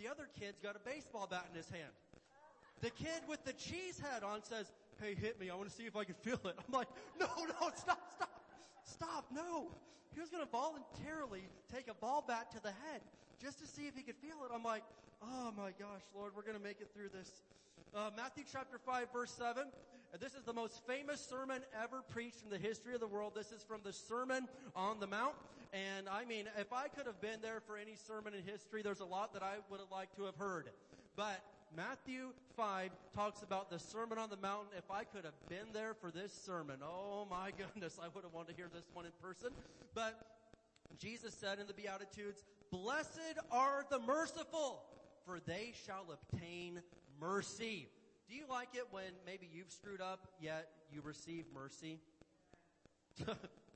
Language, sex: English, male